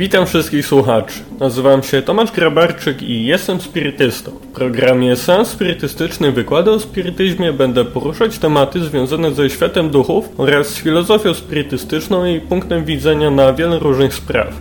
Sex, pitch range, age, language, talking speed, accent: male, 125-165 Hz, 20-39, Polish, 145 wpm, native